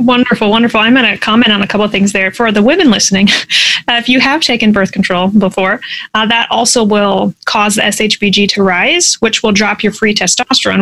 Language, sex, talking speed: English, female, 210 wpm